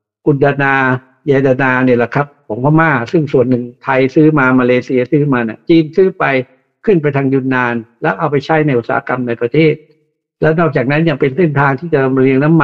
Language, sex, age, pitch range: Thai, male, 60-79, 130-165 Hz